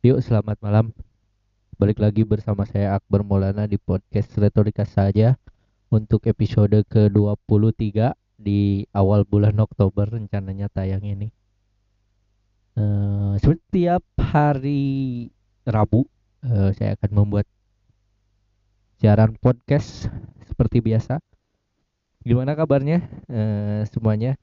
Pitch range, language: 100-125 Hz, Indonesian